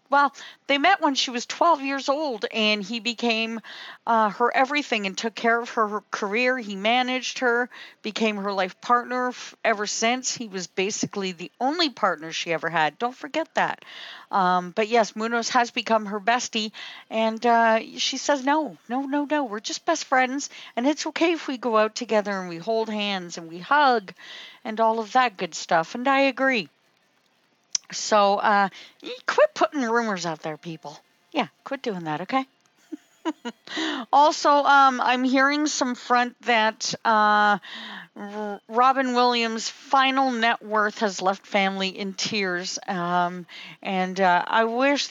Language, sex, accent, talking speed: English, female, American, 165 wpm